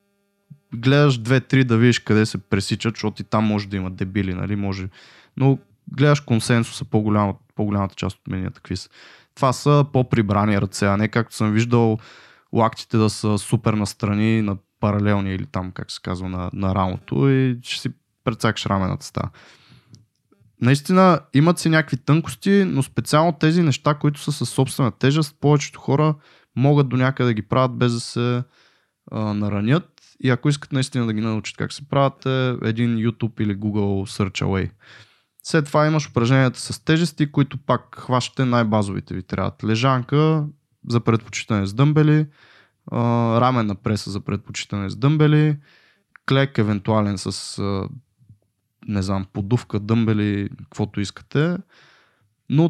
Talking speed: 150 wpm